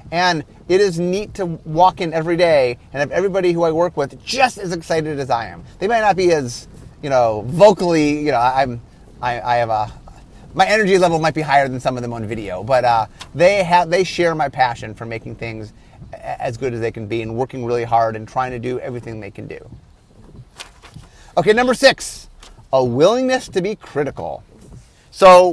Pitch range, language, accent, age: 130-185 Hz, English, American, 30-49